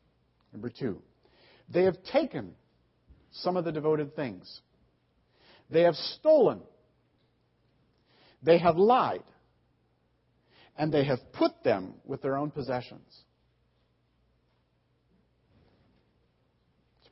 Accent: American